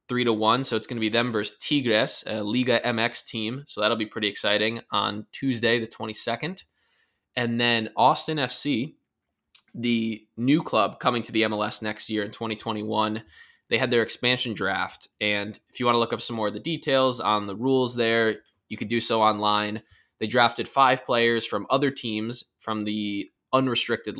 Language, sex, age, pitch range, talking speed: English, male, 20-39, 105-120 Hz, 180 wpm